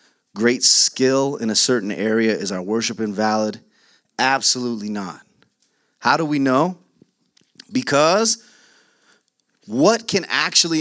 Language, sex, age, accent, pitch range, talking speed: English, male, 30-49, American, 110-165 Hz, 110 wpm